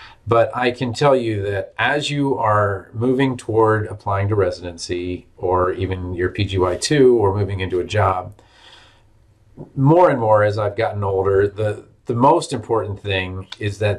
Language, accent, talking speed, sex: English, American, 165 wpm, male